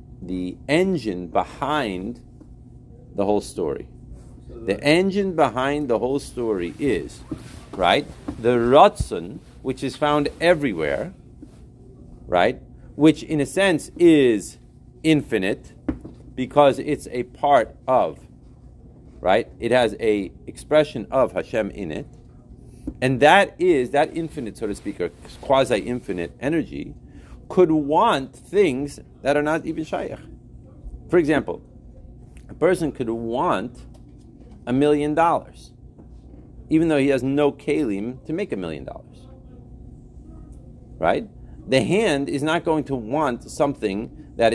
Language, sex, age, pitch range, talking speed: English, male, 40-59, 115-155 Hz, 120 wpm